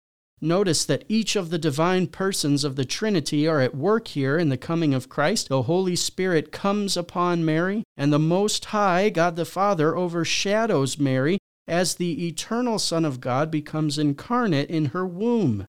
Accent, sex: American, male